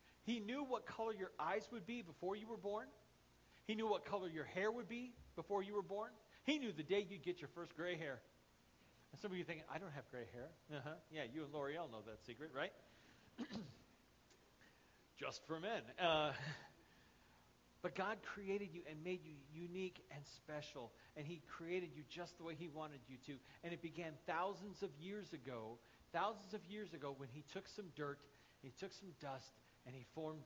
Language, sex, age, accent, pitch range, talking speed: English, male, 40-59, American, 135-185 Hz, 200 wpm